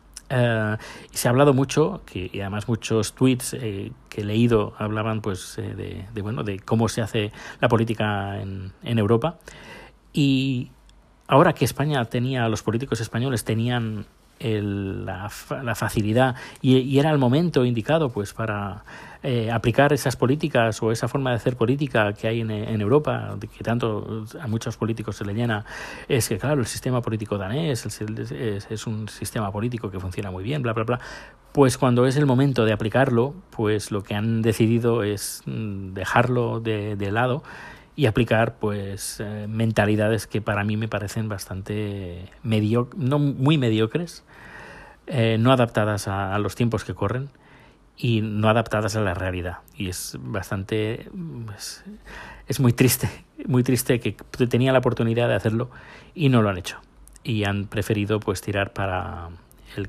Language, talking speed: Spanish, 170 wpm